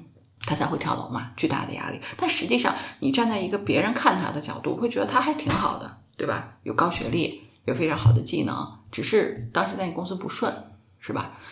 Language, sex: Chinese, female